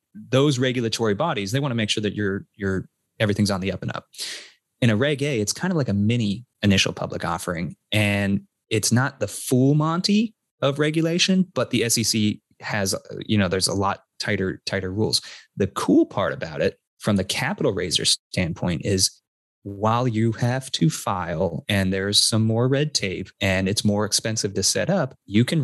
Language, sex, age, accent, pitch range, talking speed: English, male, 20-39, American, 95-115 Hz, 185 wpm